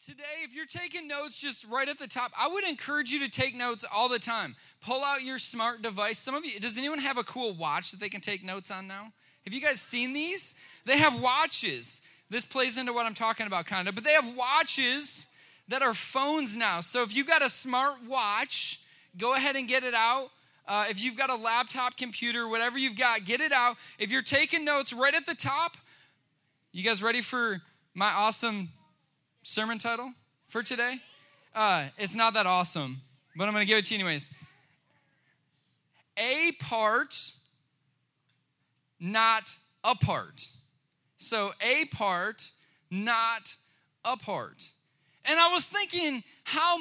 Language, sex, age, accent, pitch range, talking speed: English, male, 20-39, American, 200-275 Hz, 180 wpm